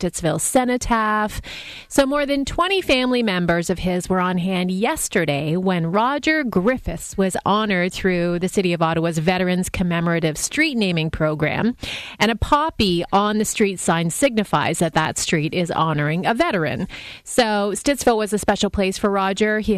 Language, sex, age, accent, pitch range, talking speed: English, female, 30-49, American, 170-215 Hz, 160 wpm